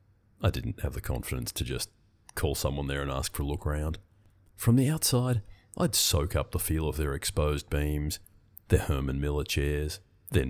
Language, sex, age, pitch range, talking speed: English, male, 30-49, 75-100 Hz, 190 wpm